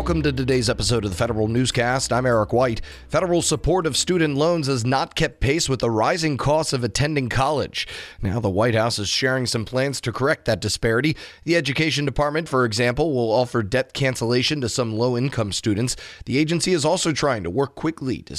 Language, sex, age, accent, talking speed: English, male, 30-49, American, 200 wpm